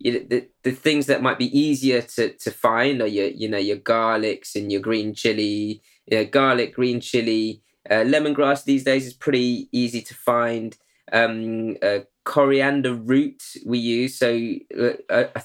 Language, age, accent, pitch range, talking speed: English, 20-39, British, 110-140 Hz, 175 wpm